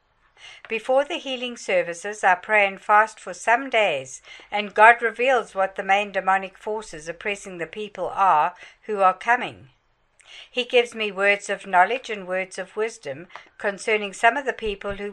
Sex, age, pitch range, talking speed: female, 60-79, 195-235 Hz, 165 wpm